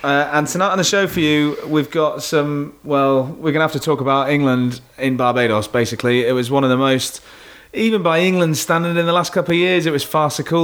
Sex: male